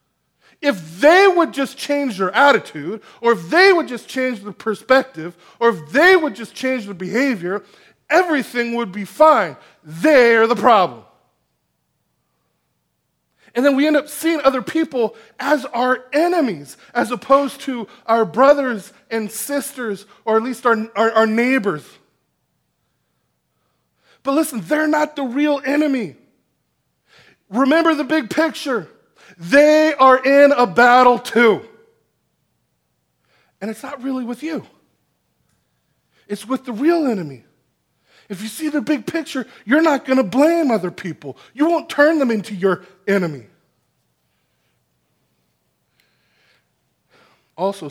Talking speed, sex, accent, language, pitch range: 130 wpm, male, American, English, 180-275 Hz